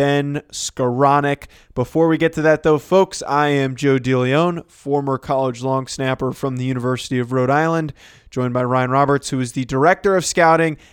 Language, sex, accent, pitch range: English, male, American, 135-160 Hz